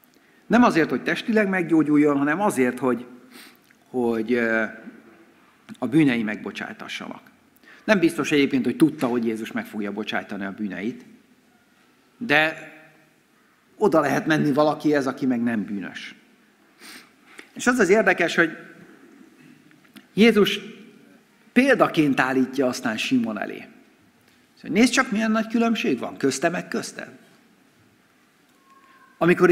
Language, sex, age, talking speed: Hungarian, male, 60-79, 115 wpm